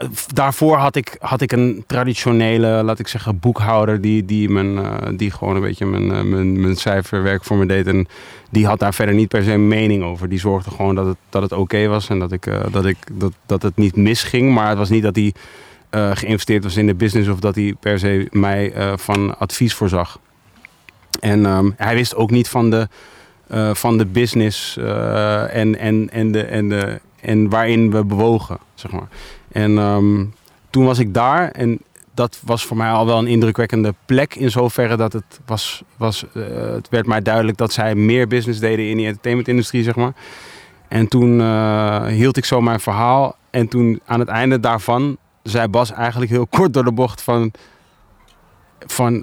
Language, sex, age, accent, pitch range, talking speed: Dutch, male, 30-49, Dutch, 100-120 Hz, 200 wpm